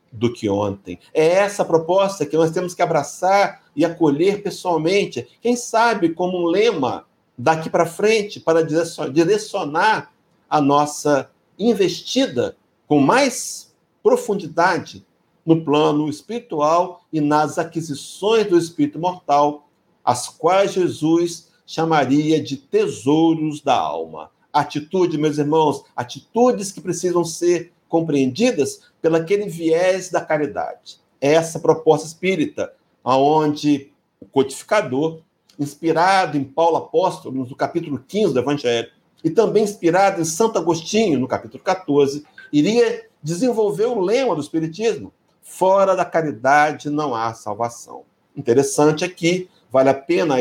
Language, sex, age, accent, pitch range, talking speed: Portuguese, male, 60-79, Brazilian, 150-190 Hz, 120 wpm